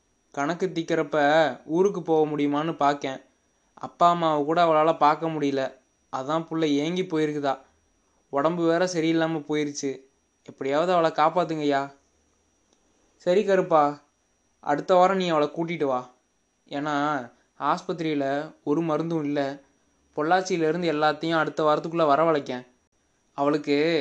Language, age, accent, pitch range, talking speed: Tamil, 20-39, native, 140-165 Hz, 105 wpm